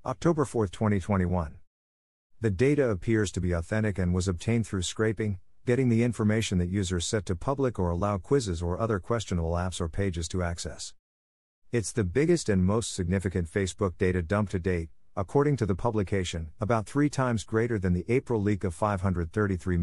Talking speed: 175 wpm